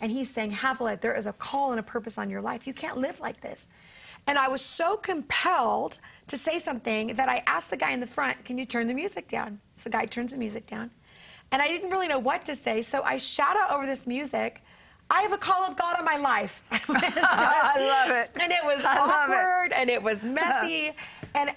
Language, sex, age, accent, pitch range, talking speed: English, female, 30-49, American, 230-285 Hz, 235 wpm